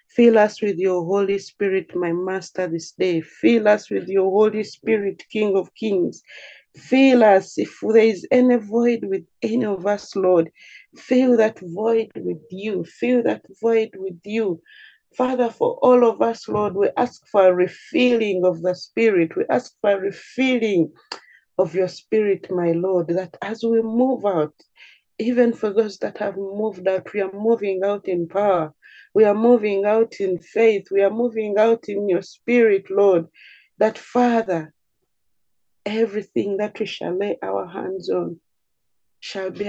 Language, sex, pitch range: English, female, 185-225 Hz